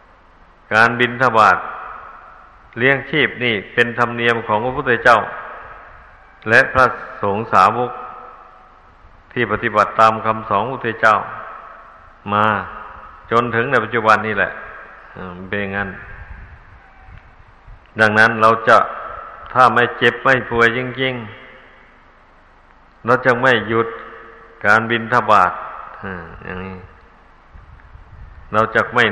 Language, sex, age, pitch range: Thai, male, 60-79, 100-120 Hz